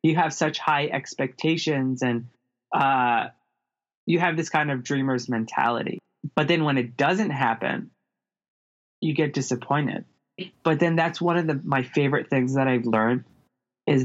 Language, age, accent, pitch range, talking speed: English, 20-39, American, 130-160 Hz, 155 wpm